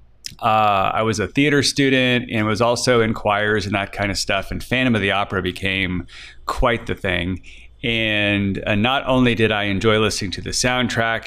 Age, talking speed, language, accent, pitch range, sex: 30-49, 190 wpm, English, American, 95-115 Hz, male